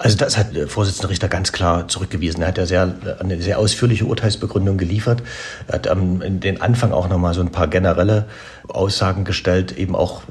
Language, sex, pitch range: German, male, 90-105 Hz